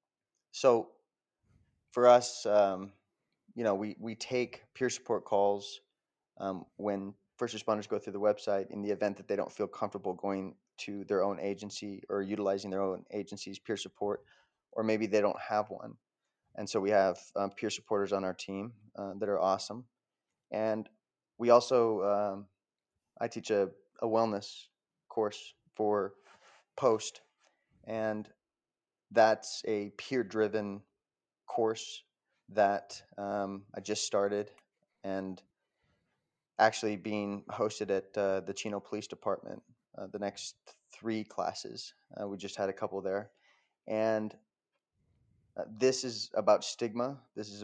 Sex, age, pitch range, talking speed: male, 20-39, 100-110 Hz, 140 wpm